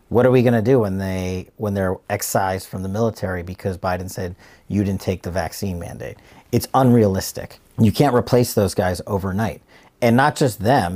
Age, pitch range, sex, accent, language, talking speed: 40-59, 95-105 Hz, male, American, English, 190 wpm